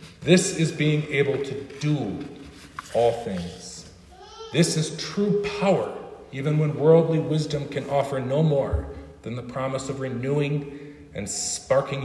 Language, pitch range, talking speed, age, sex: English, 130-155 Hz, 135 wpm, 40-59, male